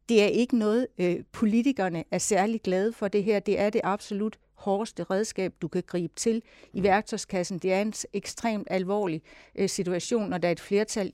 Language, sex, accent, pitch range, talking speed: Danish, female, native, 180-220 Hz, 185 wpm